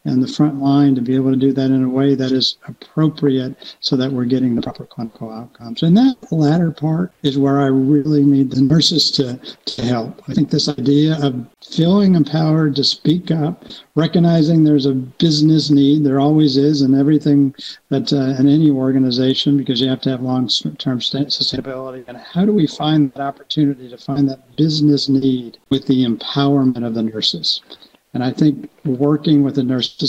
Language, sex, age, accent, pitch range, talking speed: English, male, 60-79, American, 130-145 Hz, 190 wpm